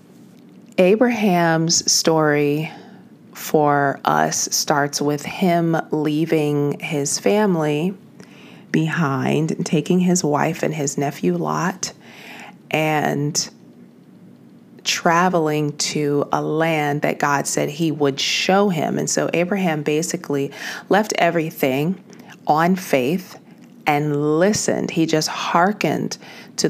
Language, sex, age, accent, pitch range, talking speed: English, female, 30-49, American, 150-190 Hz, 100 wpm